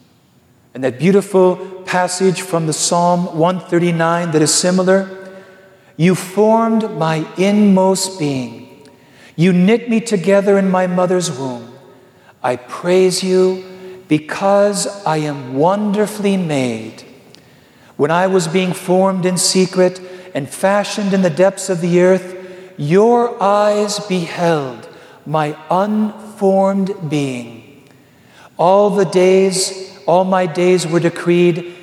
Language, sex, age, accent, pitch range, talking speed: English, male, 50-69, American, 170-210 Hz, 115 wpm